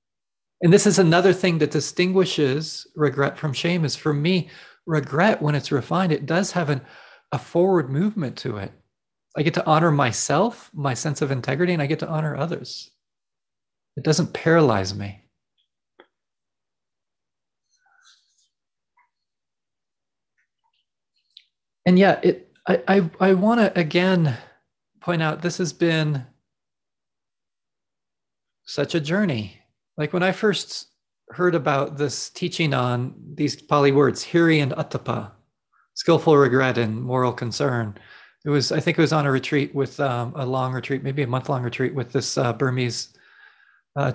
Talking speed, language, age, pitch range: 145 wpm, English, 30-49, 130-170 Hz